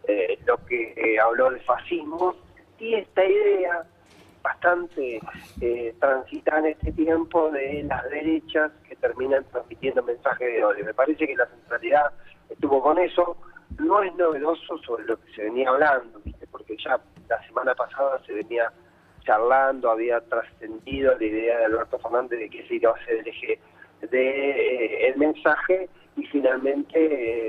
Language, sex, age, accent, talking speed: Spanish, male, 40-59, Argentinian, 160 wpm